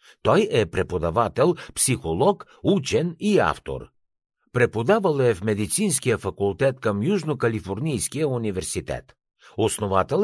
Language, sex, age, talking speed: Bulgarian, male, 60-79, 95 wpm